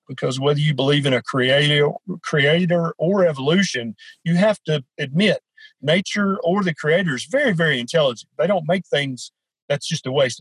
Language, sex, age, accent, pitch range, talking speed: English, male, 50-69, American, 130-170 Hz, 165 wpm